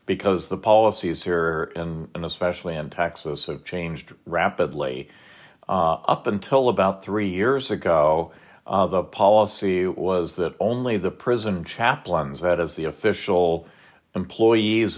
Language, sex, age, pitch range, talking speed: English, male, 50-69, 85-105 Hz, 130 wpm